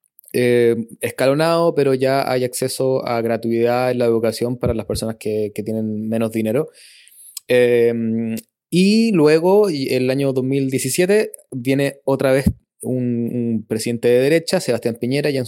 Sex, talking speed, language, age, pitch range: male, 145 wpm, Spanish, 20-39, 120-145 Hz